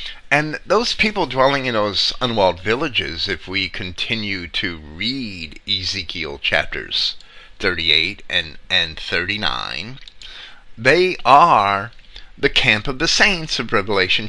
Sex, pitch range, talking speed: male, 100-135 Hz, 120 wpm